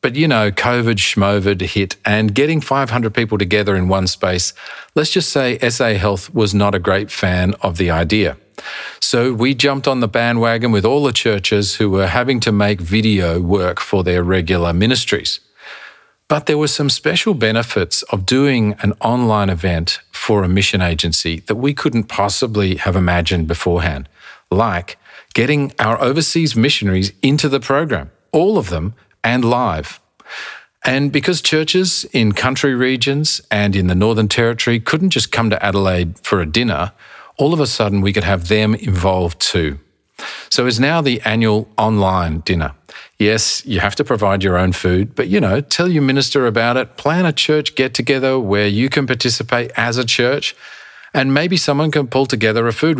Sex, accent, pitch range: male, Australian, 95-130 Hz